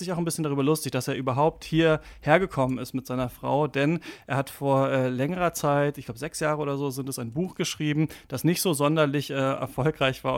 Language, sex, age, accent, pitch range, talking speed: German, male, 30-49, German, 130-150 Hz, 225 wpm